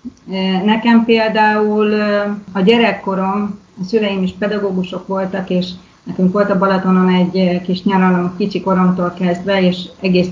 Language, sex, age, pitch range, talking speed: Hungarian, female, 30-49, 185-215 Hz, 130 wpm